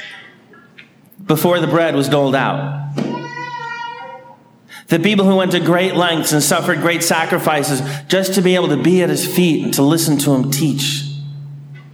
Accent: American